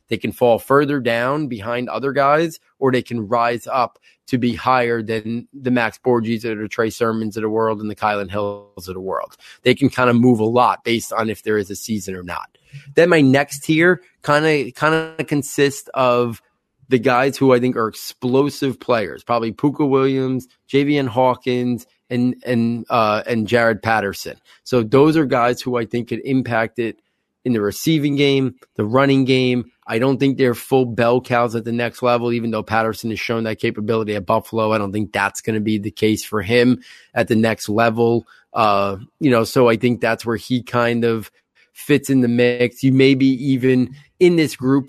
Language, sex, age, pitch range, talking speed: English, male, 30-49, 115-130 Hz, 205 wpm